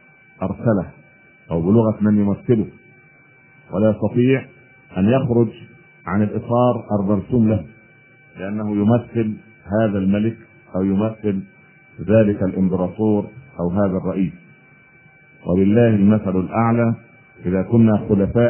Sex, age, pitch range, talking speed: male, 50-69, 105-130 Hz, 95 wpm